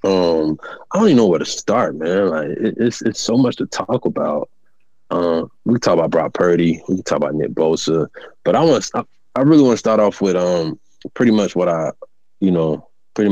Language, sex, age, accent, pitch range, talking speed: English, male, 20-39, American, 85-140 Hz, 210 wpm